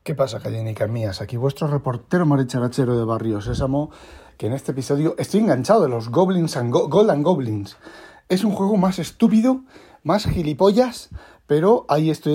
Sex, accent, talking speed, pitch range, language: male, Spanish, 170 wpm, 125-155 Hz, Spanish